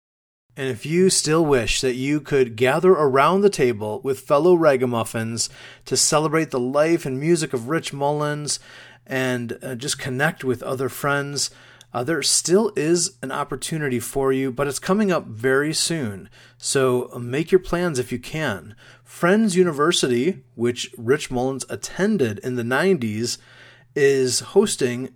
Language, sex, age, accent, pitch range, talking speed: English, male, 30-49, American, 125-155 Hz, 150 wpm